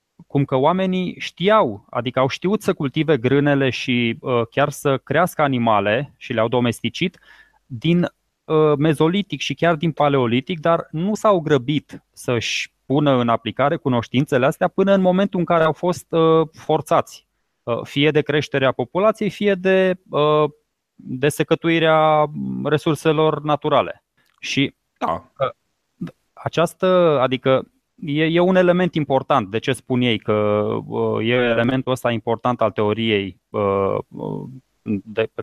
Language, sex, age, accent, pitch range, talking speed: Romanian, male, 20-39, native, 125-175 Hz, 120 wpm